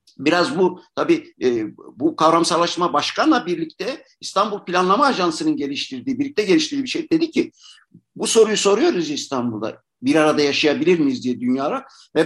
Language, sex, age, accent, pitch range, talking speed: Turkish, male, 60-79, native, 170-245 Hz, 135 wpm